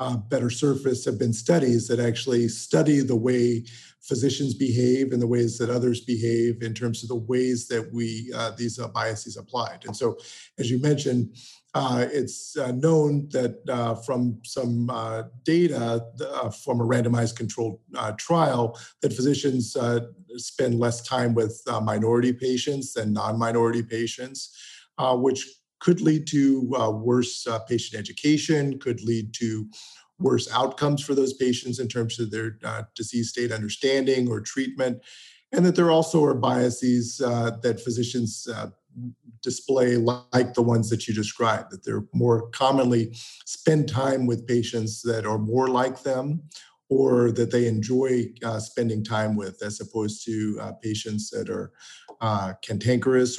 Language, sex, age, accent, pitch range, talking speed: English, male, 50-69, American, 115-130 Hz, 160 wpm